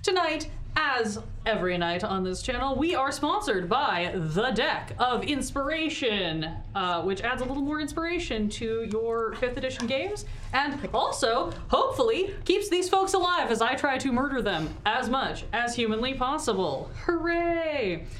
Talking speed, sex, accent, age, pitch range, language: 150 wpm, female, American, 20-39, 200-285 Hz, English